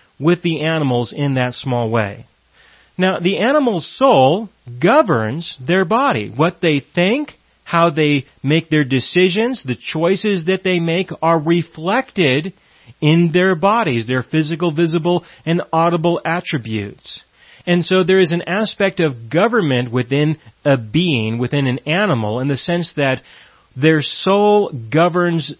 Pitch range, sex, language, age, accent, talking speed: 125-175 Hz, male, English, 30-49, American, 140 wpm